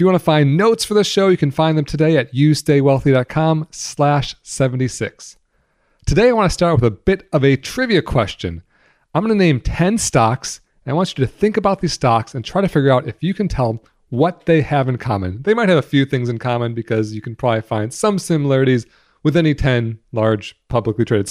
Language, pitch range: English, 120-175 Hz